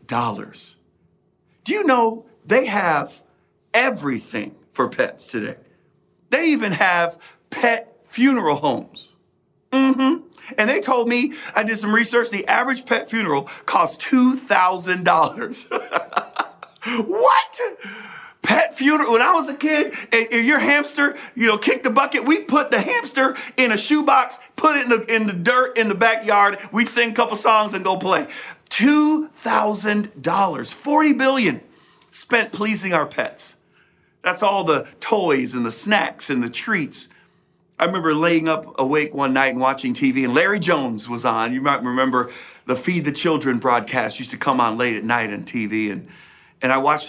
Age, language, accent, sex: 40-59, English, American, male